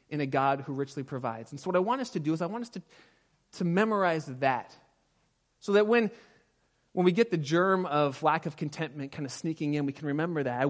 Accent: American